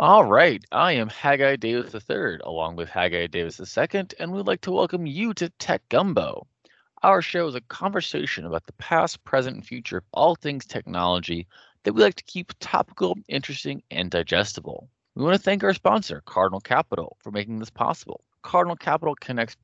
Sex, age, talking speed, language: male, 20-39, 185 wpm, English